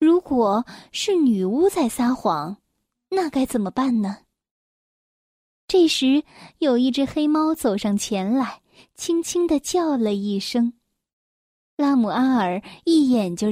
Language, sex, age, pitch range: Chinese, female, 10-29, 220-305 Hz